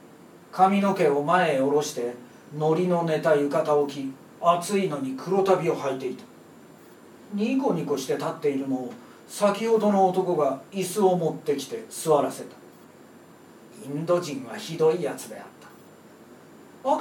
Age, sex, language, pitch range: 40-59, male, Japanese, 150-205 Hz